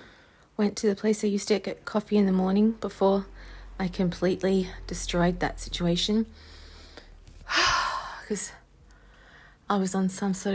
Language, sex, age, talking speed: English, female, 30-49, 135 wpm